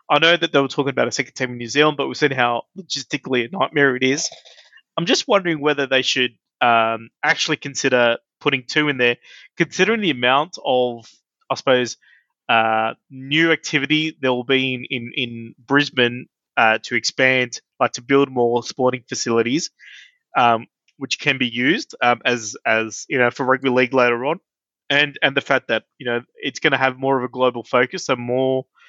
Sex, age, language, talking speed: male, 20-39, English, 195 wpm